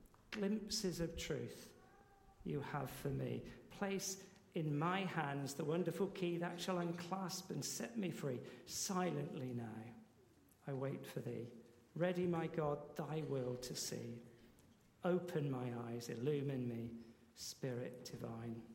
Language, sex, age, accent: English, male, 50-69, British